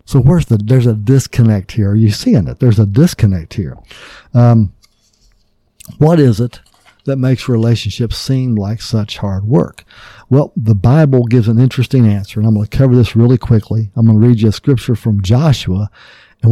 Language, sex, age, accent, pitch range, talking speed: English, male, 50-69, American, 105-125 Hz, 190 wpm